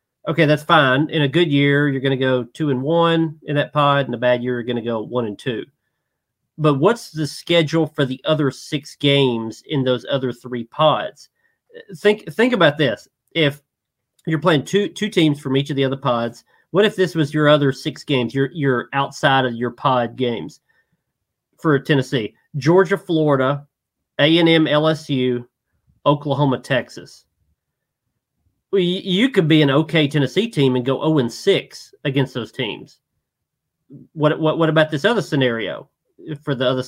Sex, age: male, 40-59